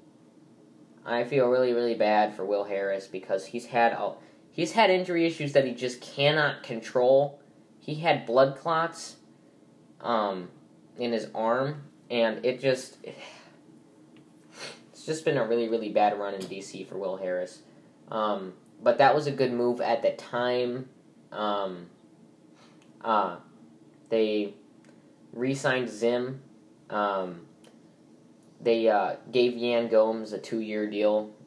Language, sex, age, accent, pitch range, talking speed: English, male, 10-29, American, 105-135 Hz, 135 wpm